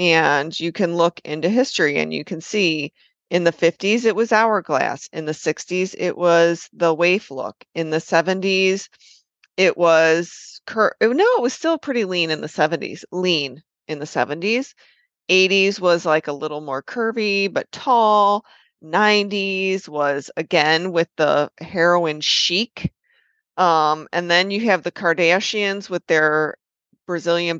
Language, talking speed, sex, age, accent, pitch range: English, 150 wpm, female, 30-49, American, 165-215 Hz